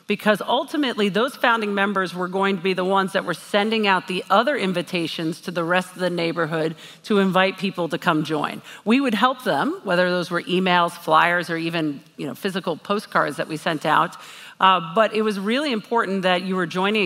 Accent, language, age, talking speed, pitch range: American, English, 50-69, 210 wpm, 170-210 Hz